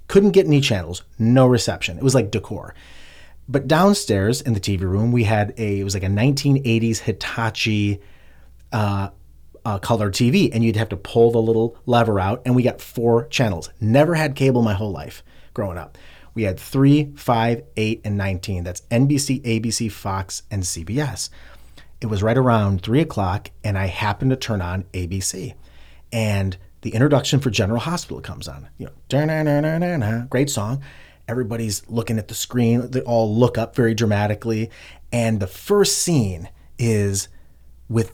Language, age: English, 30-49